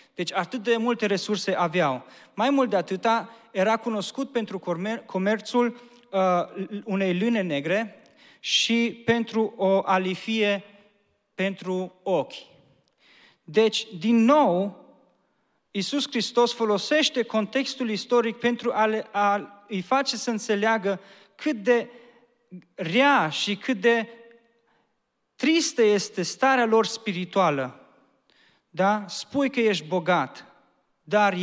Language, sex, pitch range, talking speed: Romanian, male, 175-230 Hz, 110 wpm